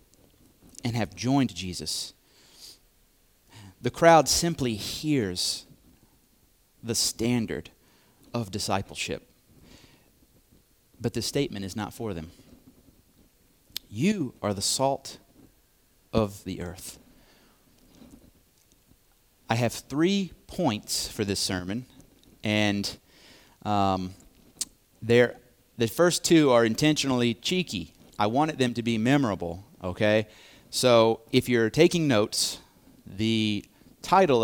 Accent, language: American, English